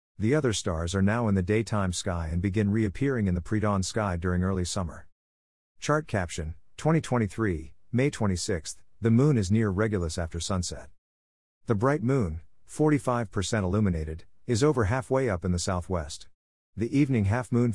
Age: 50-69